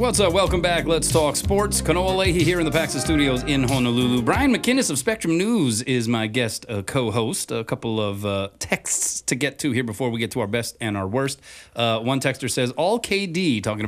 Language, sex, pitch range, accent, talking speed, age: English, male, 110-140 Hz, American, 220 wpm, 30-49